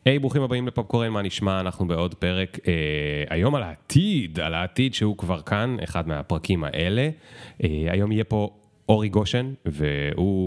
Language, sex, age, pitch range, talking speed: Hebrew, male, 30-49, 85-115 Hz, 165 wpm